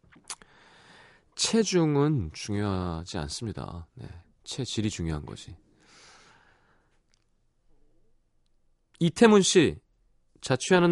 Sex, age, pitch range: male, 30-49, 95-145 Hz